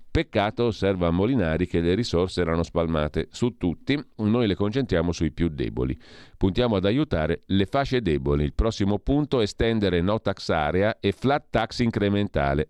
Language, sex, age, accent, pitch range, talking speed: Italian, male, 40-59, native, 85-110 Hz, 160 wpm